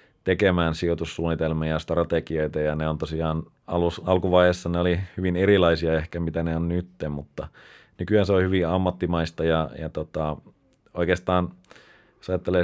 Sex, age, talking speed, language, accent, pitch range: male, 30-49, 140 wpm, Finnish, native, 80-90 Hz